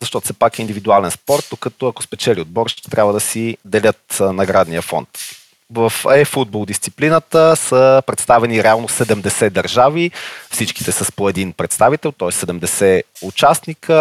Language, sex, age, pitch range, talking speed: Bulgarian, male, 30-49, 105-130 Hz, 145 wpm